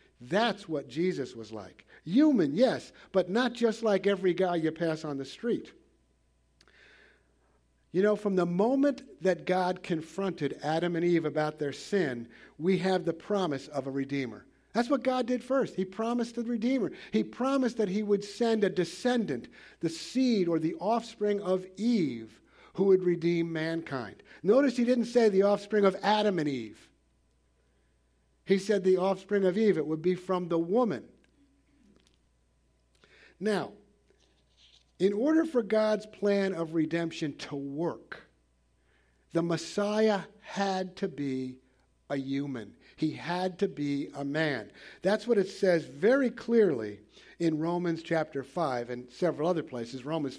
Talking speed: 150 wpm